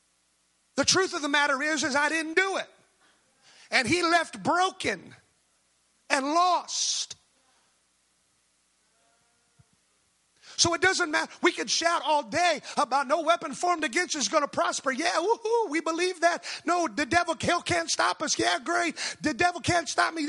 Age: 30-49